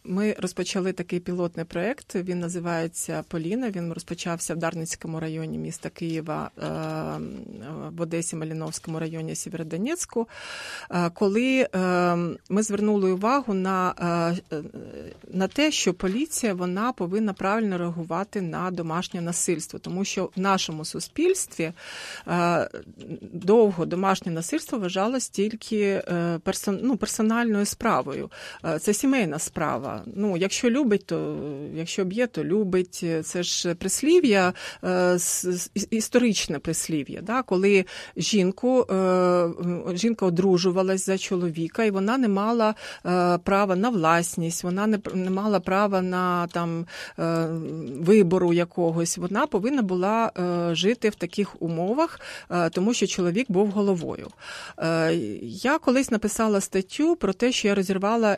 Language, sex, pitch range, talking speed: Ukrainian, female, 170-210 Hz, 110 wpm